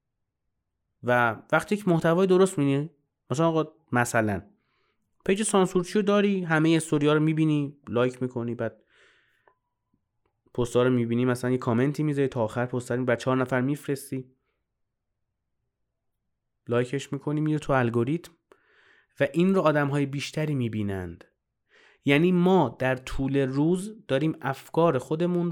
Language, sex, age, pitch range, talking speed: Persian, male, 30-49, 115-145 Hz, 130 wpm